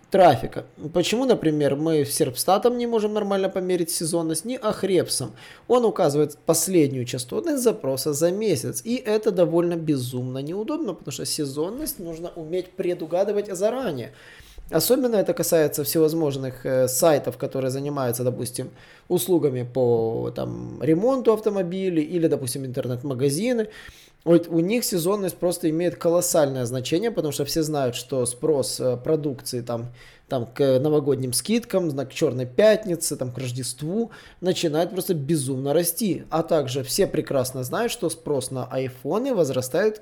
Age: 20-39